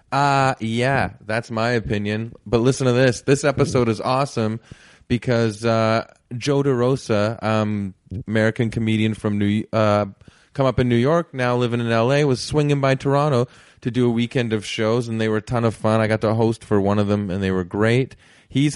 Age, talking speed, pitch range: 20-39, 200 wpm, 110-135 Hz